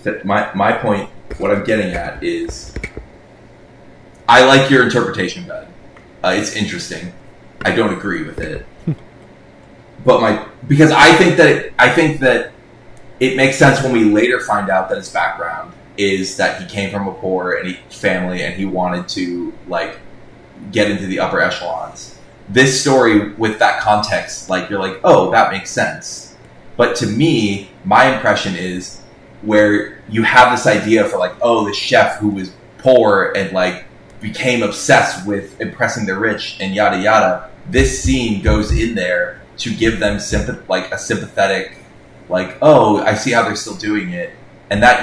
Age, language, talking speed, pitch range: 20-39, English, 170 wpm, 100-130 Hz